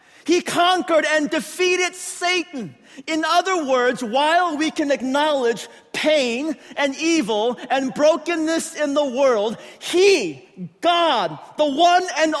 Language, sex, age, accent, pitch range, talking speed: English, male, 40-59, American, 240-315 Hz, 120 wpm